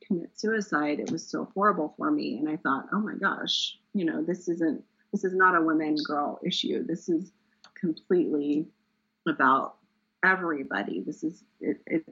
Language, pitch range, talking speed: English, 170-225 Hz, 160 wpm